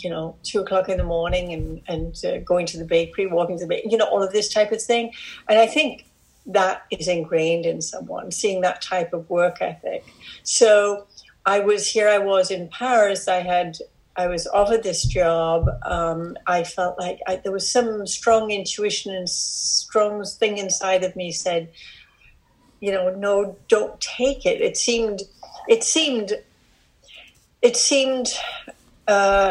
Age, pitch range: 60-79, 175-215 Hz